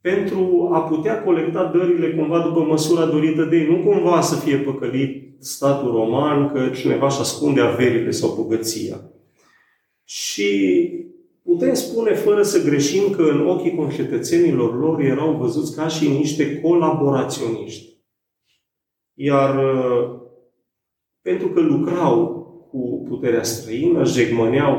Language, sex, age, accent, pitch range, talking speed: Romanian, male, 40-59, native, 125-185 Hz, 120 wpm